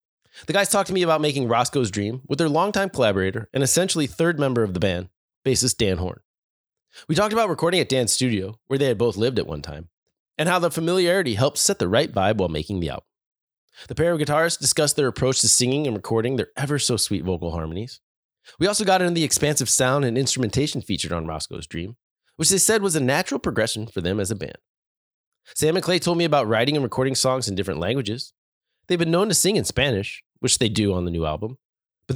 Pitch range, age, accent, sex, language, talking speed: 110-165 Hz, 20-39, American, male, English, 220 wpm